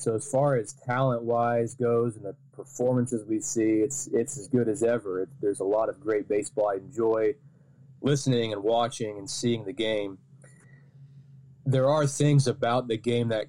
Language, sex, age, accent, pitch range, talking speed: English, male, 20-39, American, 110-135 Hz, 175 wpm